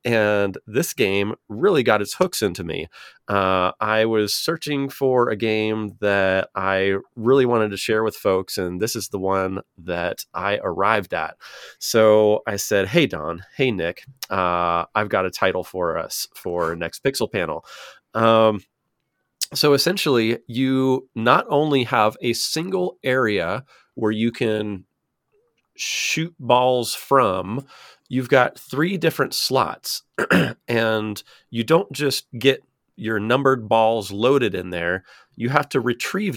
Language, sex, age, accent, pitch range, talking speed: English, male, 30-49, American, 100-130 Hz, 145 wpm